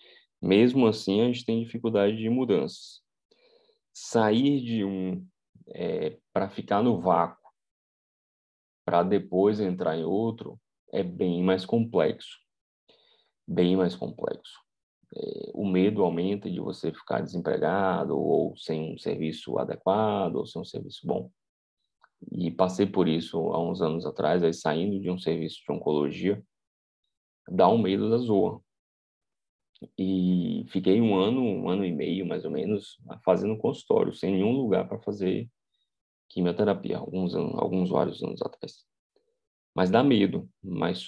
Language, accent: Portuguese, Brazilian